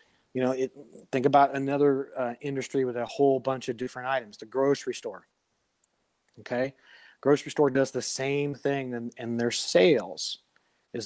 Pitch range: 125-145 Hz